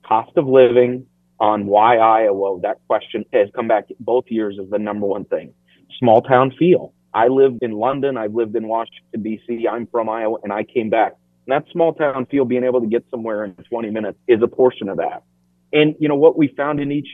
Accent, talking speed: American, 220 wpm